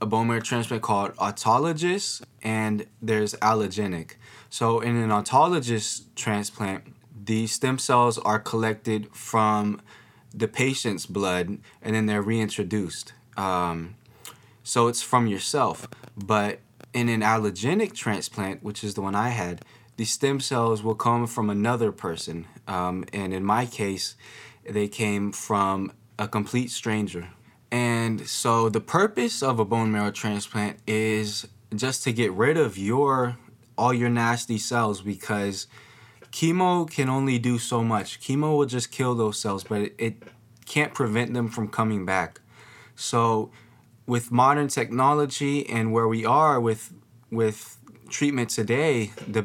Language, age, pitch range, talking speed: English, 20-39, 105-120 Hz, 140 wpm